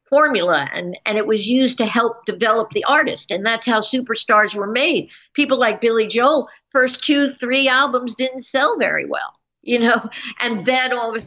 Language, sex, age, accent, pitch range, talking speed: English, female, 50-69, American, 200-245 Hz, 185 wpm